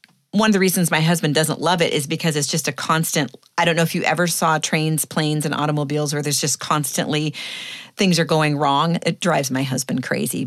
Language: English